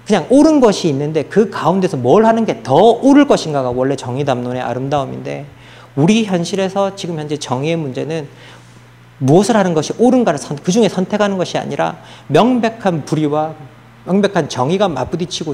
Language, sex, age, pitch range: Korean, male, 40-59, 130-200 Hz